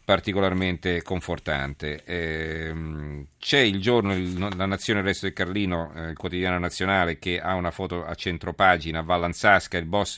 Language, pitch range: Italian, 80-100 Hz